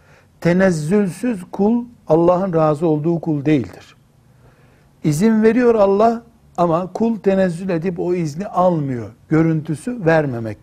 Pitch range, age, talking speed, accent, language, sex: 155-195 Hz, 60-79, 105 wpm, native, Turkish, male